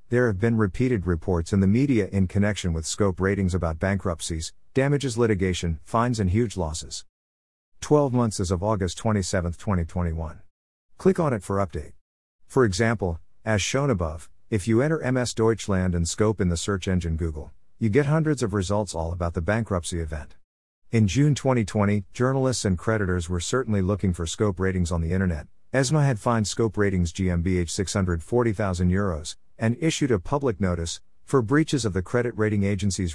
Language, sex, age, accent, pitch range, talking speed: English, male, 50-69, American, 90-120 Hz, 170 wpm